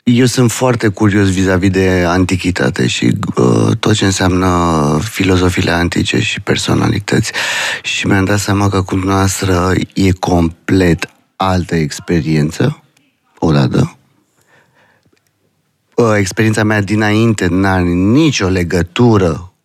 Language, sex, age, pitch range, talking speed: Romanian, male, 30-49, 95-110 Hz, 115 wpm